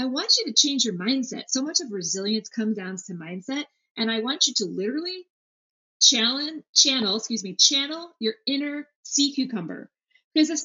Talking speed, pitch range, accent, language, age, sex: 180 wpm, 205-275 Hz, American, English, 30-49, female